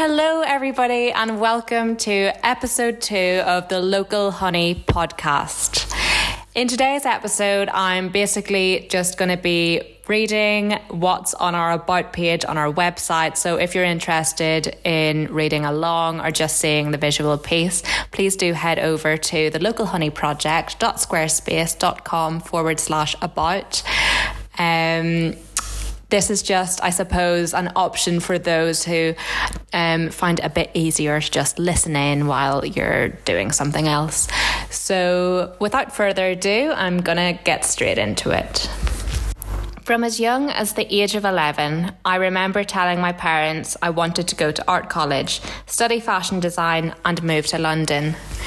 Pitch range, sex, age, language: 165-195 Hz, female, 10-29, English